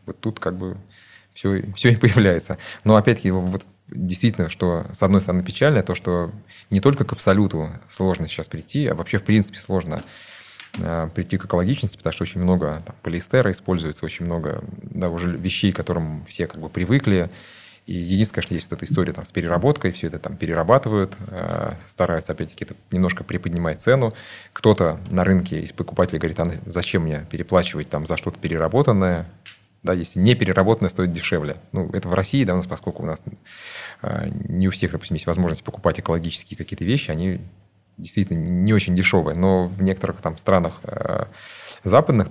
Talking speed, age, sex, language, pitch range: 170 wpm, 30-49, male, Russian, 85-100 Hz